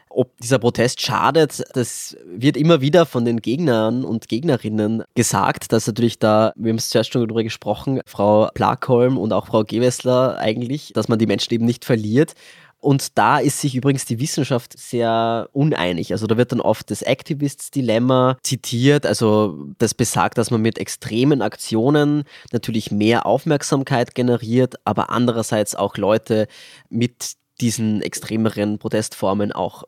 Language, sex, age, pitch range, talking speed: German, male, 20-39, 115-135 Hz, 155 wpm